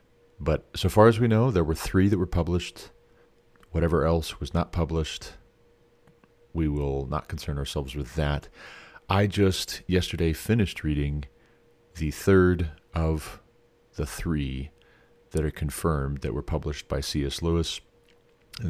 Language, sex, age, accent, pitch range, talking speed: English, male, 40-59, American, 75-100 Hz, 140 wpm